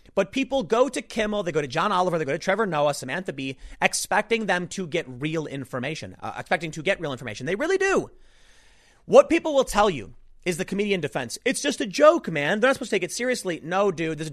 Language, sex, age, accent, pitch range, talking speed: English, male, 30-49, American, 145-205 Hz, 235 wpm